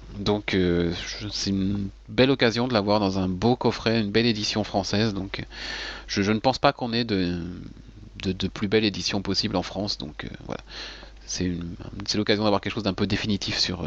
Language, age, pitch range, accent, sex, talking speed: French, 30-49, 90-110 Hz, French, male, 210 wpm